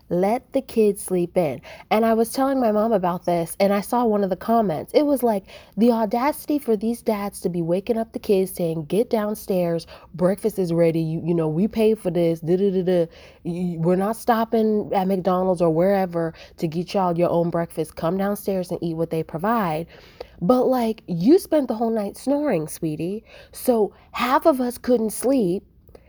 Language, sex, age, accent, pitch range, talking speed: English, female, 30-49, American, 165-225 Hz, 190 wpm